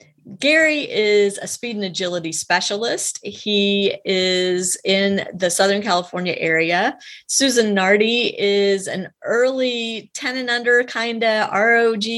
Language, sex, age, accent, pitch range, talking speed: English, female, 30-49, American, 175-225 Hz, 125 wpm